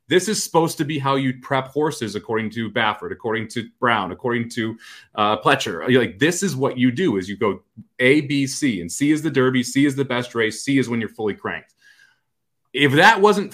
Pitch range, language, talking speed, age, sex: 120-170 Hz, English, 220 wpm, 30-49, male